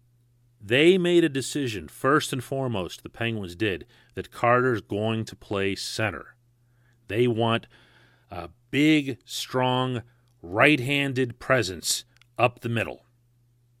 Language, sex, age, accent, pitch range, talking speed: English, male, 40-59, American, 105-125 Hz, 115 wpm